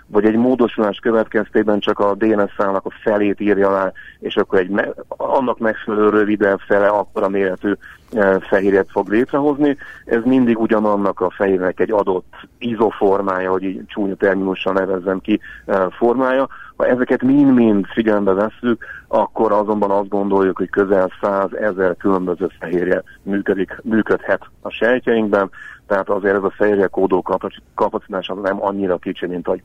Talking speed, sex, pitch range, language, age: 150 wpm, male, 95-110 Hz, Hungarian, 30-49